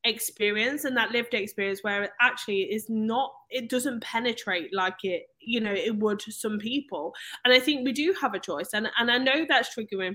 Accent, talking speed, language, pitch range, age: British, 205 wpm, English, 200-250 Hz, 20-39